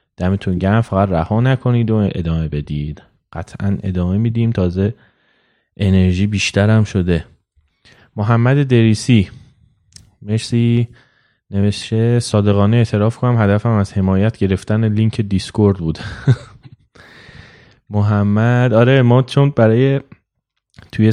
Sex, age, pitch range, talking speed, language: male, 20-39, 90-115 Hz, 100 wpm, Persian